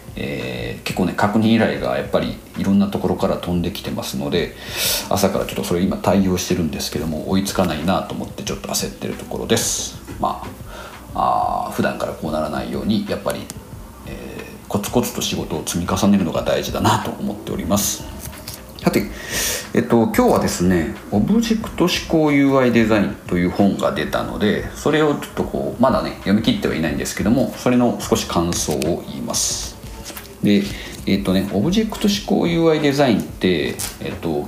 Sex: male